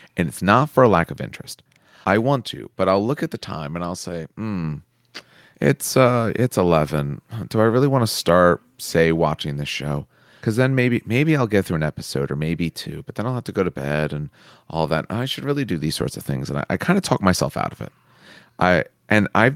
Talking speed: 240 wpm